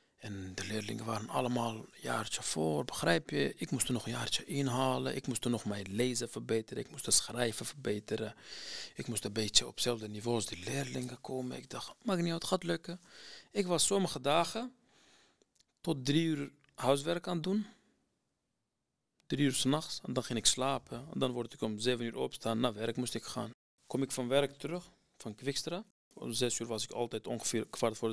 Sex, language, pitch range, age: male, Dutch, 115-150 Hz, 40-59